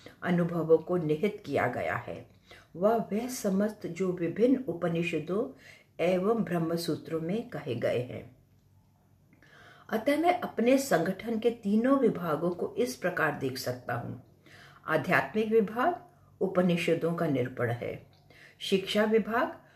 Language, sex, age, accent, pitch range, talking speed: English, female, 60-79, Indian, 160-220 Hz, 120 wpm